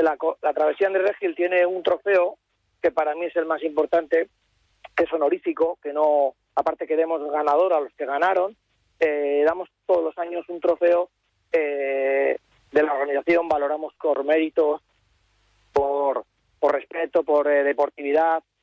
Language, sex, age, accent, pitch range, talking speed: Spanish, male, 30-49, Spanish, 150-180 Hz, 155 wpm